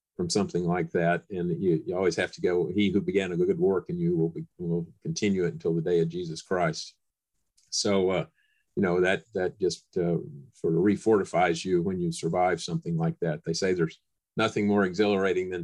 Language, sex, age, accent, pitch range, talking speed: English, male, 50-69, American, 90-120 Hz, 210 wpm